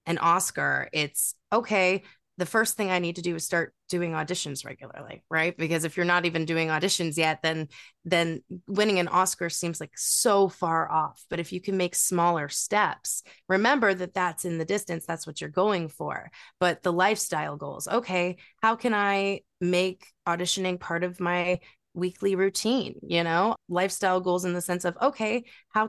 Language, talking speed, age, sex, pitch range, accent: English, 180 wpm, 20-39, female, 170-200 Hz, American